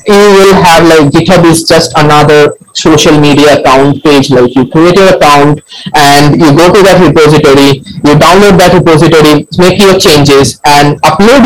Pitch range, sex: 150-195 Hz, male